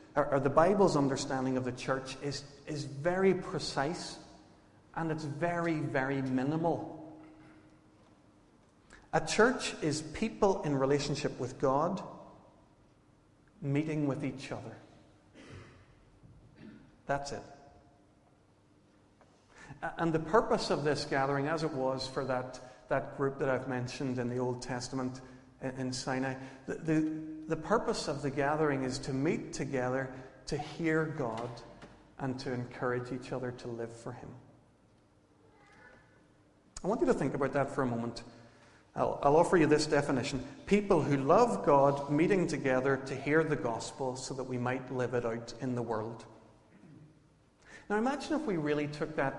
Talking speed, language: 145 wpm, English